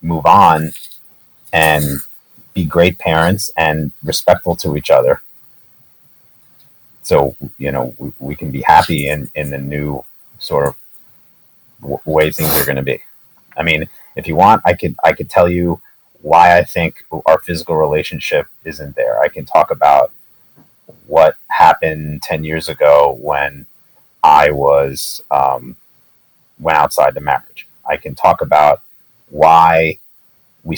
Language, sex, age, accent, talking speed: English, male, 30-49, American, 145 wpm